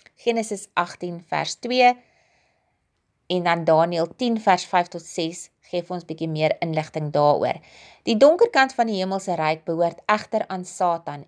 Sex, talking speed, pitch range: female, 155 wpm, 165-230 Hz